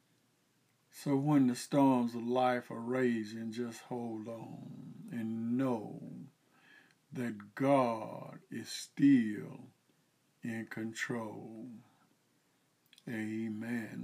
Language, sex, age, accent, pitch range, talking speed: English, male, 50-69, American, 115-130 Hz, 85 wpm